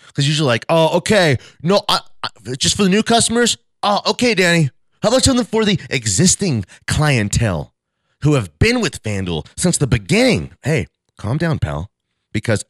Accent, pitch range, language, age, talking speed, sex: American, 95-140 Hz, English, 30-49, 170 wpm, male